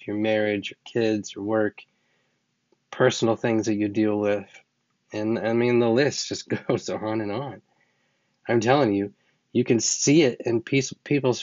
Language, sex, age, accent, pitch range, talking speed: English, male, 30-49, American, 100-120 Hz, 165 wpm